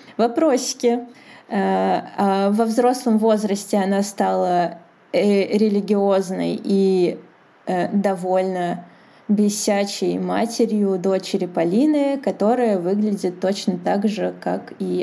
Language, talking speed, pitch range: Russian, 80 wpm, 190-215 Hz